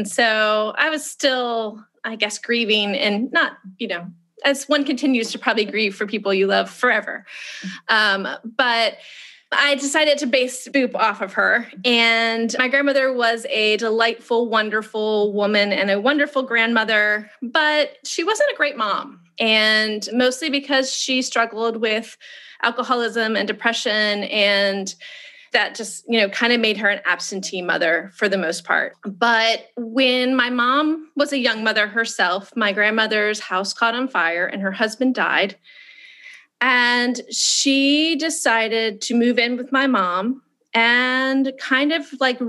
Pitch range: 215-270 Hz